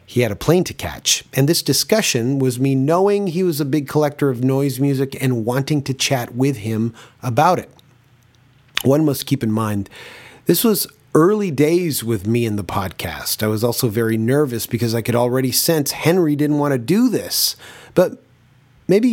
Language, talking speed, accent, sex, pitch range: English, 190 wpm, American, male, 115-150 Hz